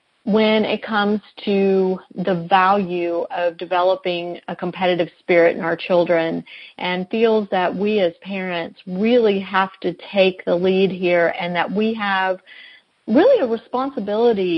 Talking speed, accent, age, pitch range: 140 wpm, American, 40-59, 185-240 Hz